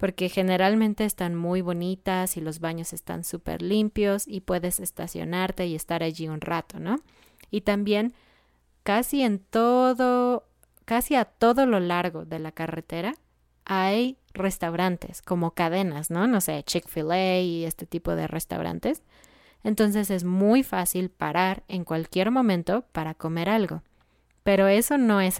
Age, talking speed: 20-39, 145 wpm